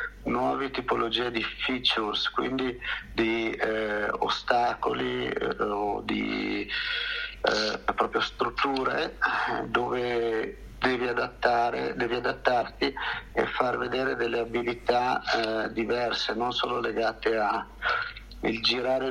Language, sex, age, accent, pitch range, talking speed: Italian, male, 50-69, native, 110-125 Hz, 100 wpm